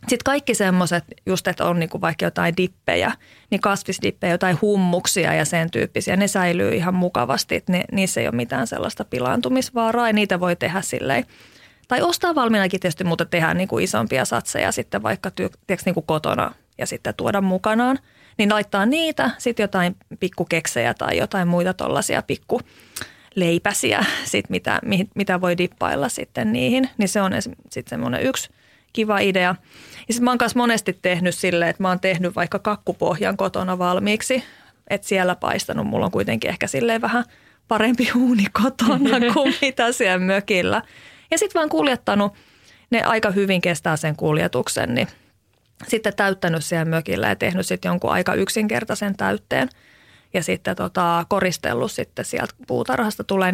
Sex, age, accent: female, 30-49, native